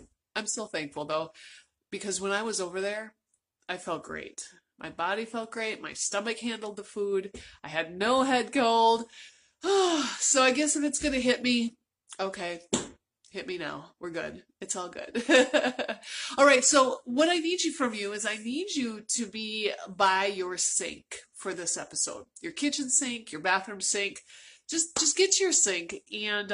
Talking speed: 180 wpm